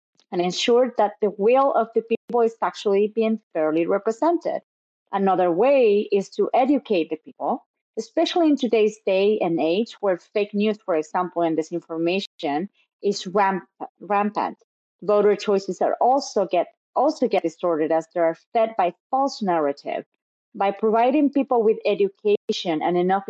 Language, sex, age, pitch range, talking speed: English, female, 30-49, 185-235 Hz, 145 wpm